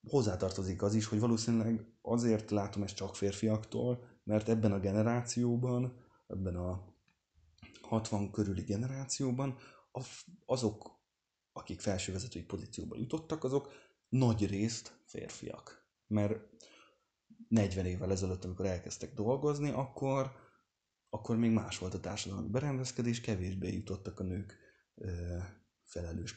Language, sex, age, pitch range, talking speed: Hungarian, male, 20-39, 95-115 Hz, 110 wpm